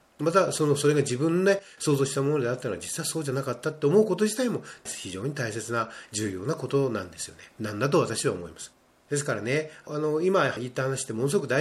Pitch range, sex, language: 120-175 Hz, male, Japanese